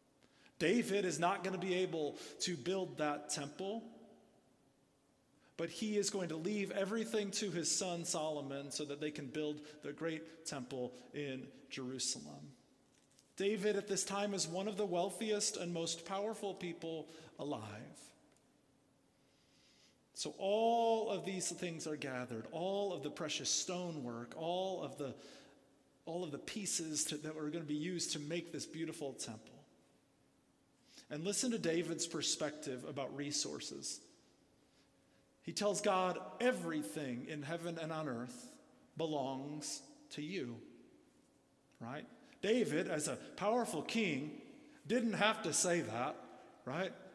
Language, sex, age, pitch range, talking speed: English, male, 30-49, 150-200 Hz, 135 wpm